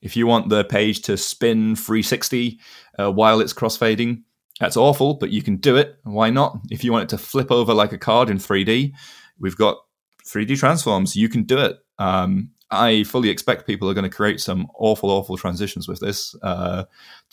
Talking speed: 195 wpm